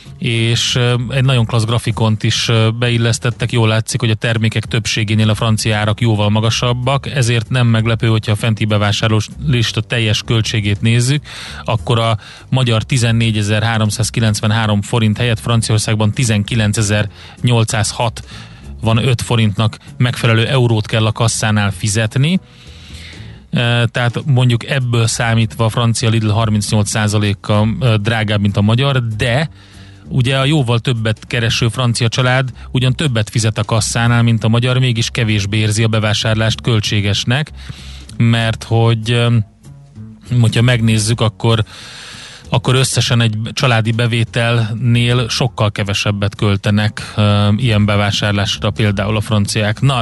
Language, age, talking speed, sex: Hungarian, 30-49, 120 wpm, male